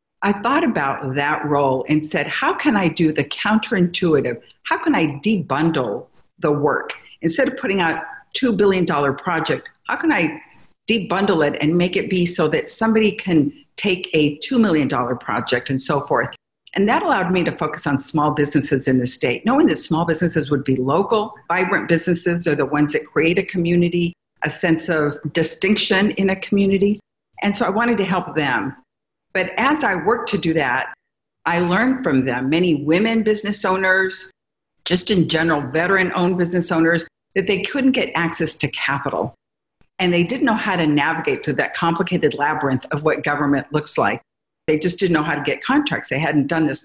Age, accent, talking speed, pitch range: 50-69, American, 190 wpm, 150-195 Hz